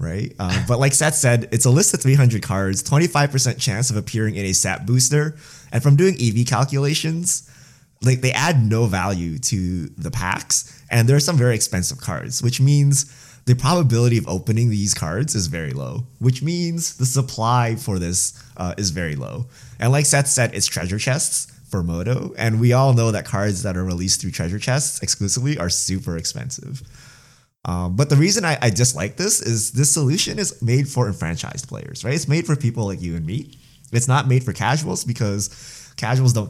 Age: 20-39